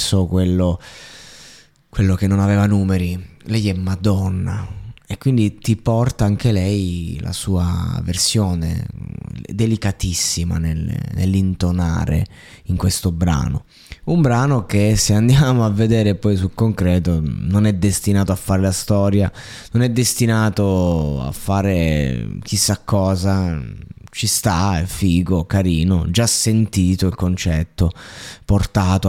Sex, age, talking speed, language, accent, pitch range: male, 20-39, 120 wpm, Italian, native, 90-115 Hz